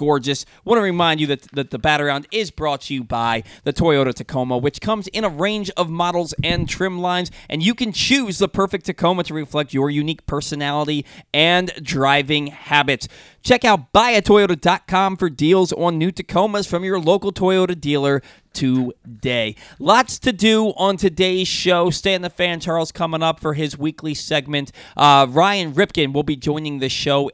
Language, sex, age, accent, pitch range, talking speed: English, male, 20-39, American, 130-175 Hz, 180 wpm